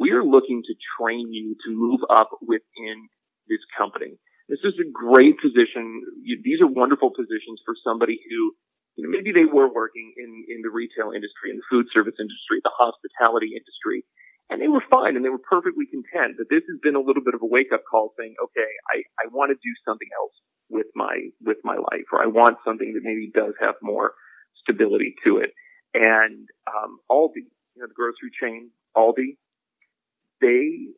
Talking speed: 195 wpm